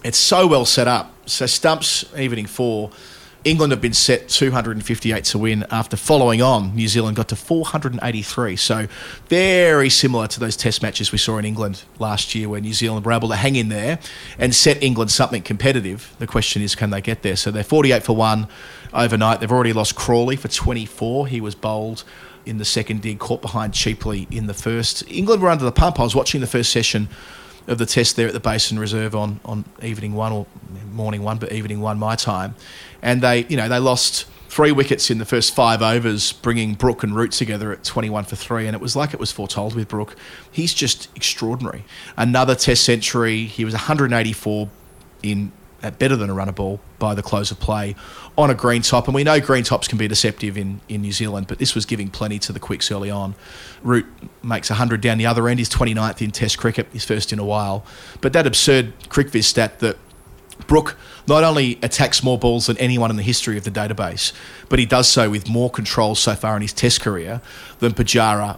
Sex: male